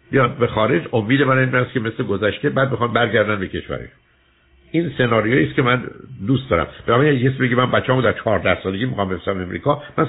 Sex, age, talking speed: male, 60-79, 200 wpm